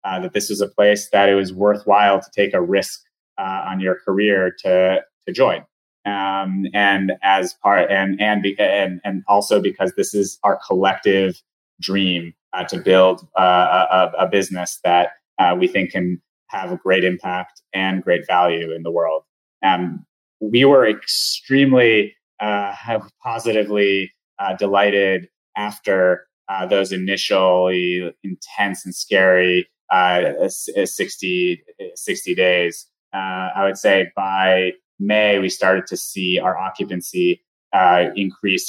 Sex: male